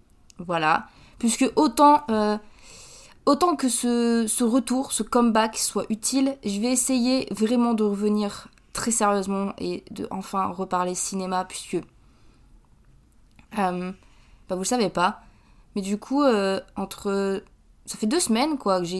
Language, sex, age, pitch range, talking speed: French, female, 20-39, 190-235 Hz, 140 wpm